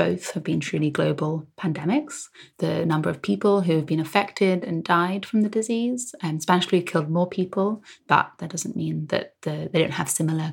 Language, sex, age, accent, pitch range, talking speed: English, female, 20-39, British, 160-185 Hz, 195 wpm